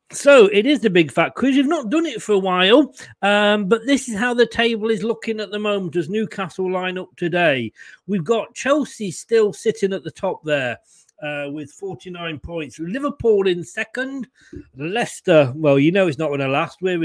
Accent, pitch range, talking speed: British, 150-220 Hz, 205 wpm